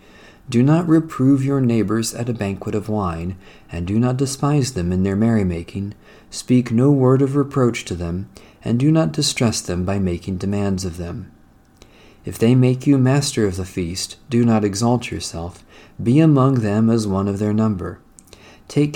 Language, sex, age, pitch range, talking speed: English, male, 40-59, 95-130 Hz, 175 wpm